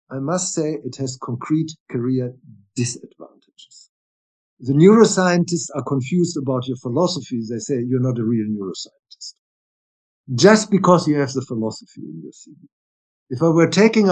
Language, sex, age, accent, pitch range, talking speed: English, male, 50-69, German, 125-180 Hz, 150 wpm